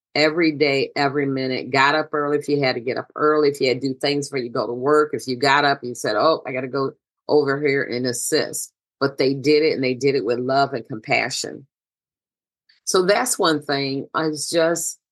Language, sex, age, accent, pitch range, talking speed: English, female, 40-59, American, 135-160 Hz, 235 wpm